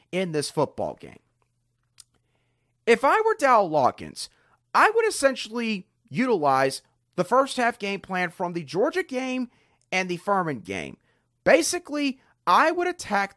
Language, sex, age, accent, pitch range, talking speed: English, male, 40-59, American, 150-235 Hz, 135 wpm